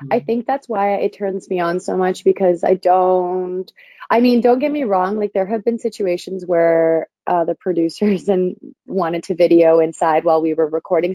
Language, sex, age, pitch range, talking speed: English, female, 20-39, 180-230 Hz, 200 wpm